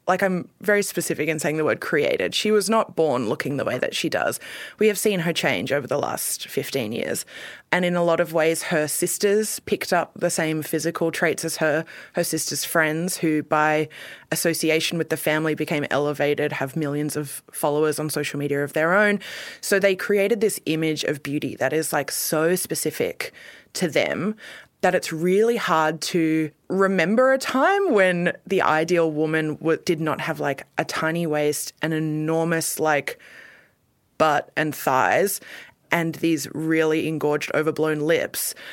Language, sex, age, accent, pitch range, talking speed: English, female, 20-39, Australian, 155-185 Hz, 175 wpm